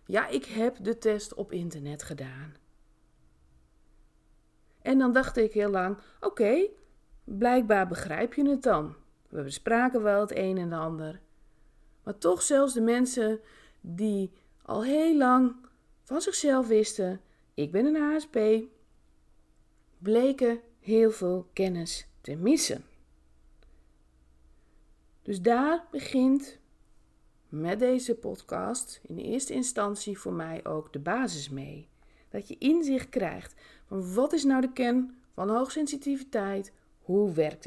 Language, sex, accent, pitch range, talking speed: Dutch, female, Dutch, 170-260 Hz, 125 wpm